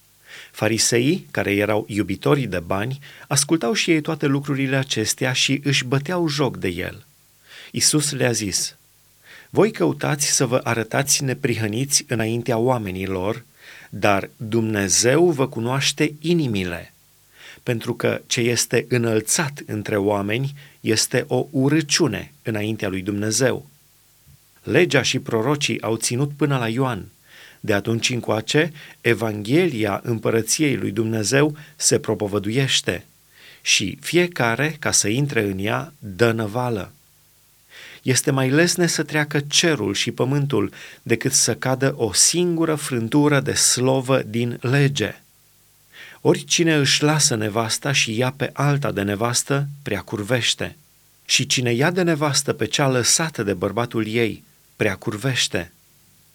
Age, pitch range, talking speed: 30-49, 110-145 Hz, 120 wpm